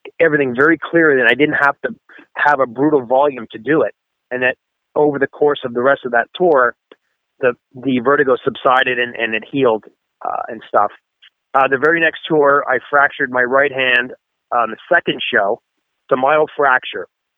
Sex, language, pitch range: male, English, 120-145 Hz